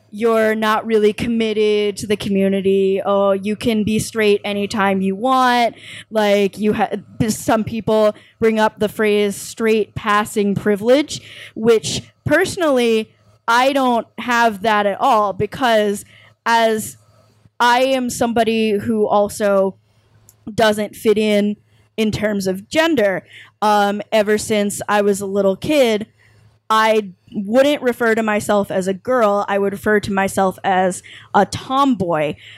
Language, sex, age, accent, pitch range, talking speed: English, female, 20-39, American, 200-225 Hz, 135 wpm